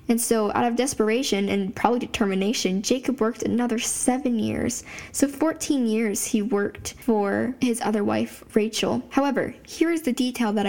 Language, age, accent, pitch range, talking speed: English, 10-29, American, 220-260 Hz, 165 wpm